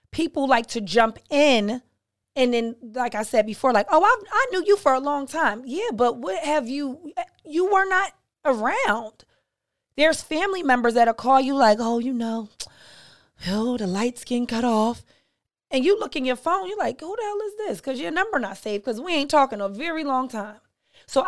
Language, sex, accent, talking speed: English, female, American, 205 wpm